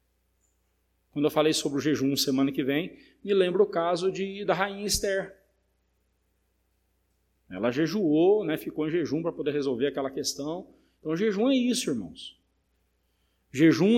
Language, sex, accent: Portuguese, male, Brazilian